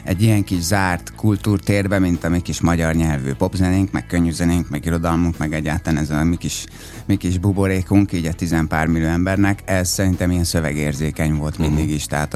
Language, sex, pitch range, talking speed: Hungarian, male, 80-100 Hz, 185 wpm